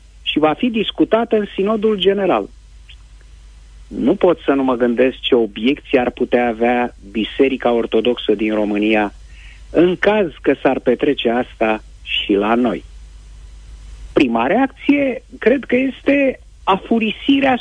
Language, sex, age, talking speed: Romanian, male, 50-69, 125 wpm